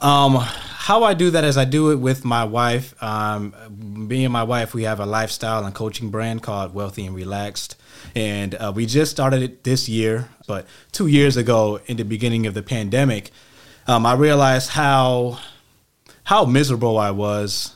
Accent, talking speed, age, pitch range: American, 180 wpm, 20-39, 105-130 Hz